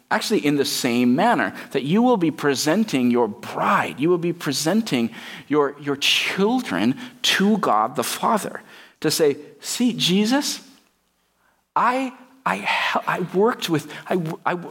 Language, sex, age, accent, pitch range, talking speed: English, male, 40-59, American, 135-210 Hz, 140 wpm